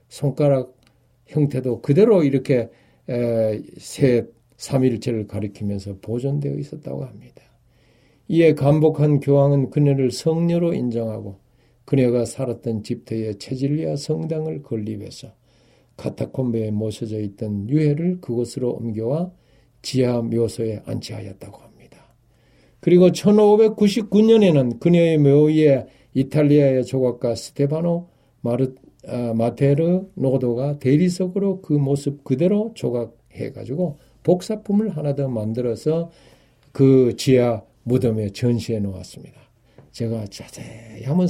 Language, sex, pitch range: Korean, male, 115-145 Hz